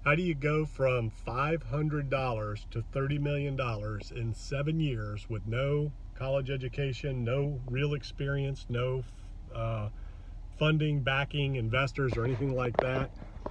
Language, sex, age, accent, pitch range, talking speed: English, male, 40-59, American, 115-145 Hz, 125 wpm